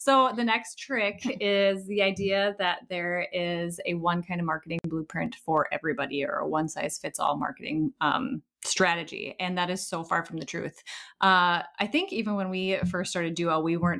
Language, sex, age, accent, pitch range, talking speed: English, female, 30-49, American, 165-195 Hz, 185 wpm